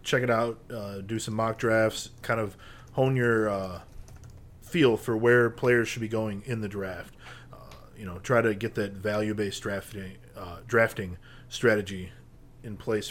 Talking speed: 170 wpm